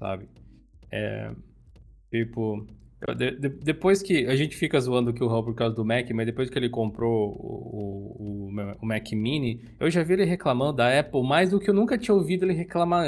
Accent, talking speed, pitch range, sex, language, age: Brazilian, 205 wpm, 115-145 Hz, male, Portuguese, 20-39